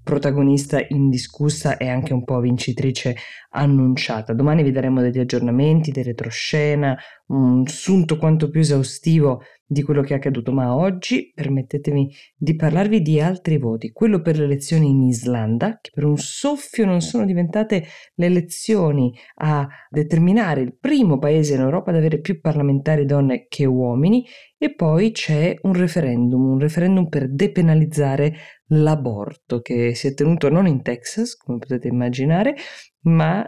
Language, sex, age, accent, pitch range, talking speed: Italian, female, 20-39, native, 130-175 Hz, 150 wpm